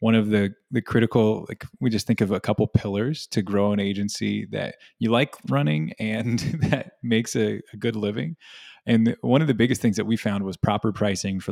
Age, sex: 20-39, male